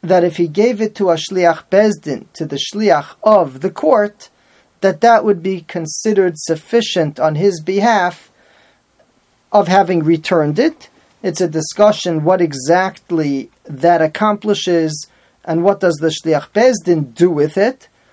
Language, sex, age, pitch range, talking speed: English, male, 40-59, 155-200 Hz, 145 wpm